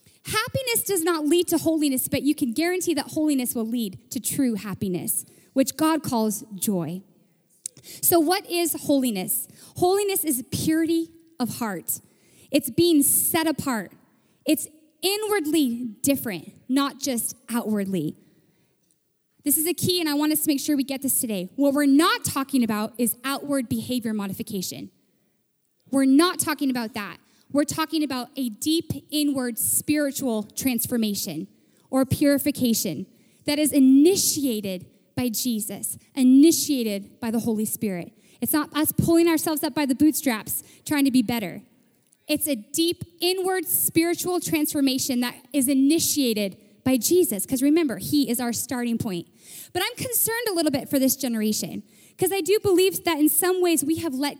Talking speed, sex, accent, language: 155 wpm, female, American, English